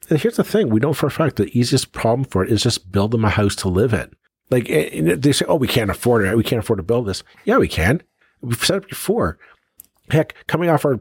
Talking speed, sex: 260 wpm, male